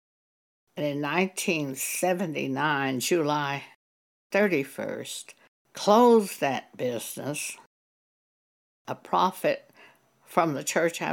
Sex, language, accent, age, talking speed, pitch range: female, English, American, 60-79, 70 wpm, 135-190 Hz